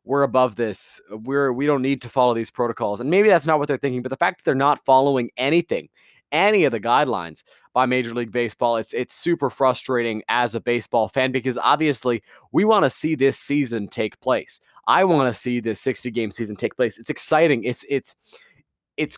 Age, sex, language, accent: 20-39, male, English, American